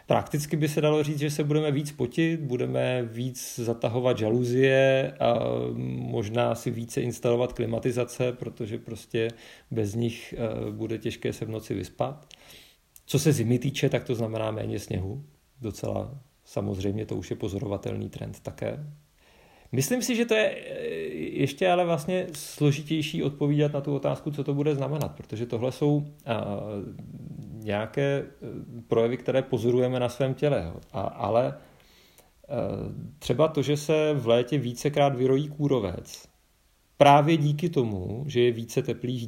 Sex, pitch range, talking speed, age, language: male, 115-145 Hz, 140 wpm, 40-59, Czech